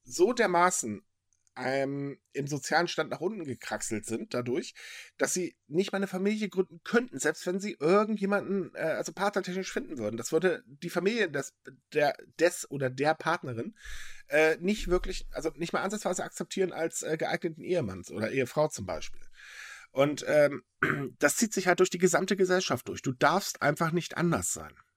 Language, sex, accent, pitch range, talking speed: German, male, German, 125-185 Hz, 170 wpm